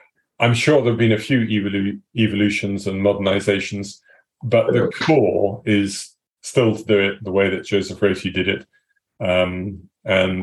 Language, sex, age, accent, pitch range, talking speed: English, male, 30-49, British, 95-110 Hz, 160 wpm